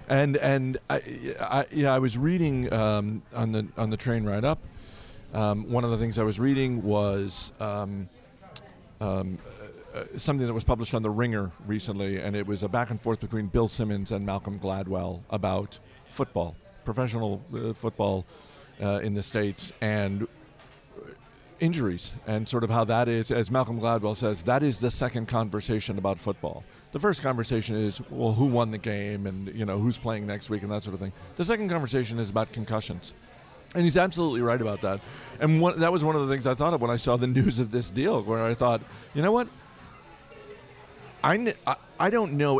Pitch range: 105-130 Hz